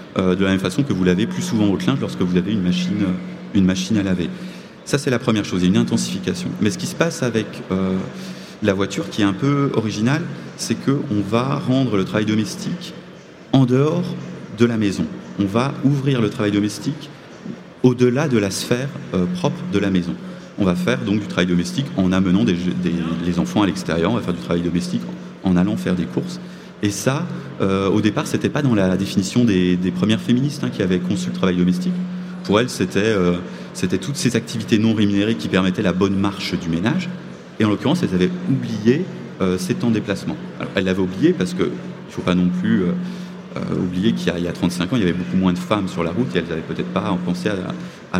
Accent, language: French, French